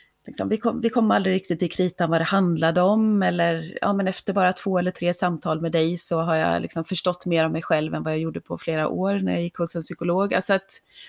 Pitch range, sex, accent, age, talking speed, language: 170-200 Hz, female, native, 30-49, 255 wpm, Swedish